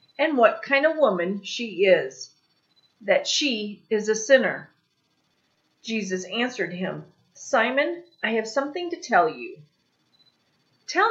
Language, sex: English, female